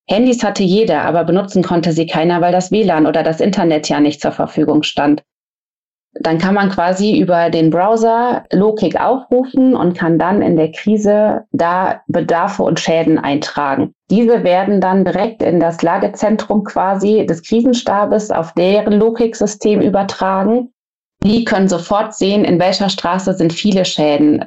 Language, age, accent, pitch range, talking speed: German, 30-49, German, 160-200 Hz, 155 wpm